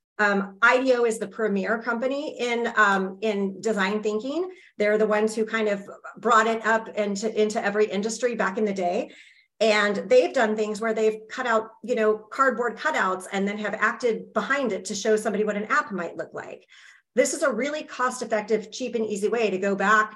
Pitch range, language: 195-240 Hz, English